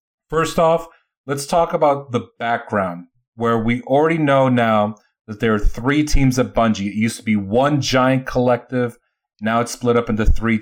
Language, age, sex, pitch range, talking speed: English, 30-49, male, 110-135 Hz, 180 wpm